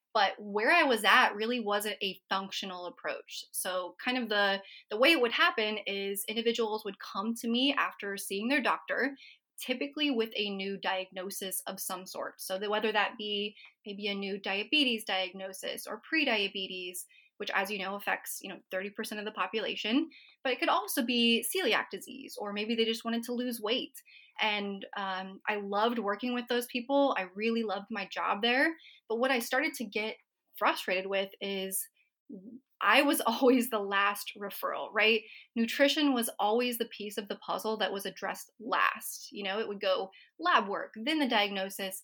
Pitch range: 200-245 Hz